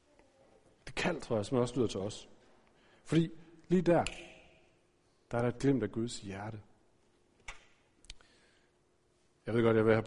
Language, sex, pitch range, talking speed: Danish, male, 115-165 Hz, 150 wpm